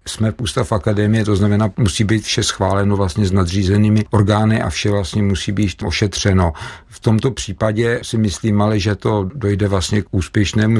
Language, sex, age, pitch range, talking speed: Czech, male, 50-69, 95-110 Hz, 170 wpm